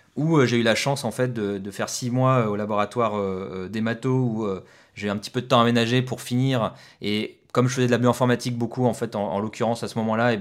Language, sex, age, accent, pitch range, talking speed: French, male, 20-39, French, 105-130 Hz, 280 wpm